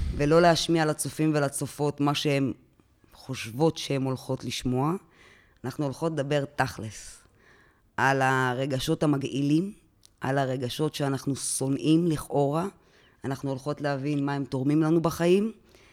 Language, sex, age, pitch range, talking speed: Hebrew, female, 20-39, 125-155 Hz, 110 wpm